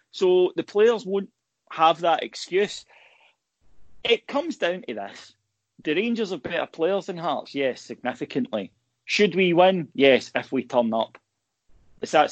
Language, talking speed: English, 150 wpm